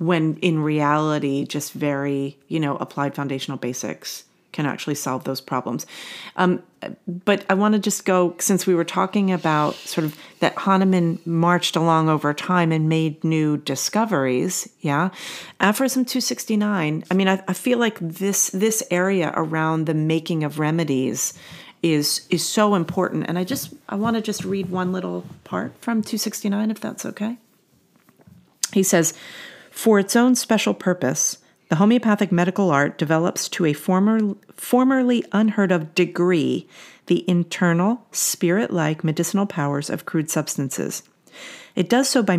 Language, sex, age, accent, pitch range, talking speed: English, female, 40-59, American, 155-200 Hz, 150 wpm